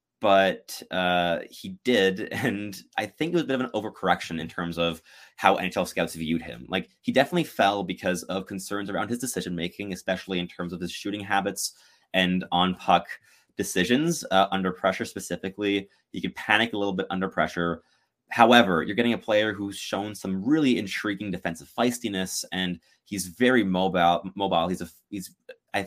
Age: 20-39